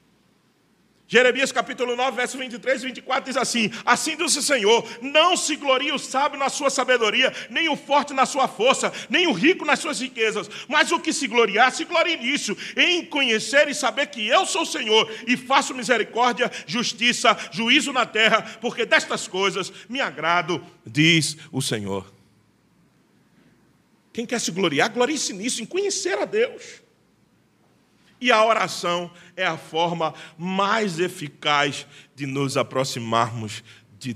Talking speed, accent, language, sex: 155 wpm, Brazilian, Portuguese, male